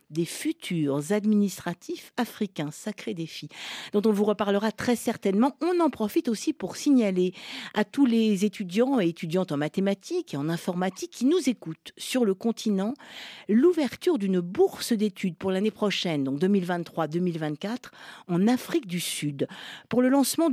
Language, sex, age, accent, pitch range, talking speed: French, female, 50-69, French, 170-235 Hz, 150 wpm